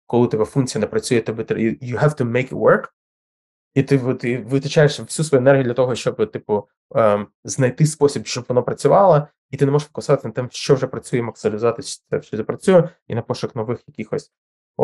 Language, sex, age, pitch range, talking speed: Ukrainian, male, 20-39, 105-130 Hz, 200 wpm